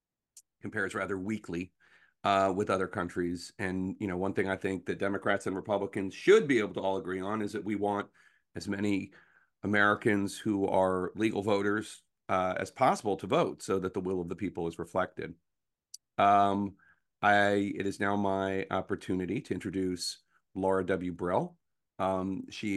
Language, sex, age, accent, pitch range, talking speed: English, male, 40-59, American, 95-110 Hz, 170 wpm